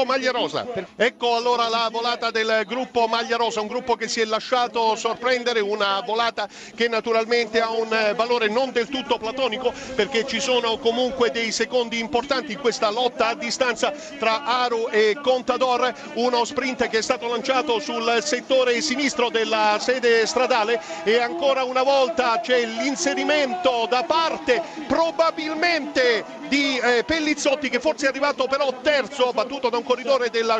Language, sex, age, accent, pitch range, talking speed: Italian, male, 50-69, native, 230-275 Hz, 155 wpm